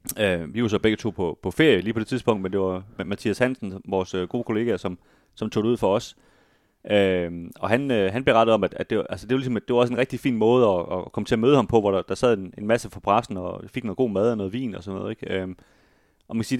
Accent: native